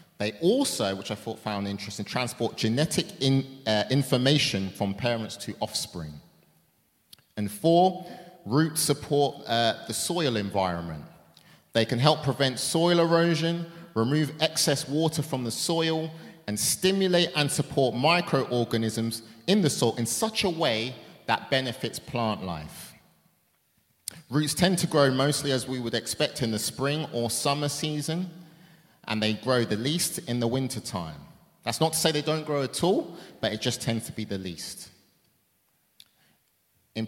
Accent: British